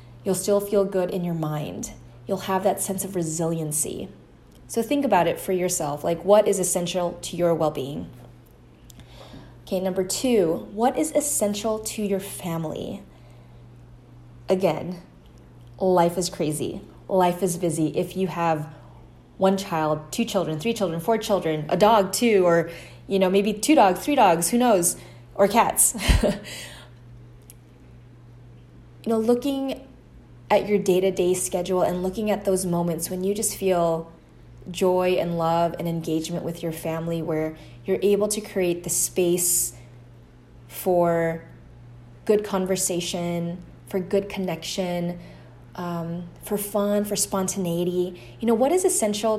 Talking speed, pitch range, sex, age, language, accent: 140 wpm, 160-200 Hz, female, 20-39, English, American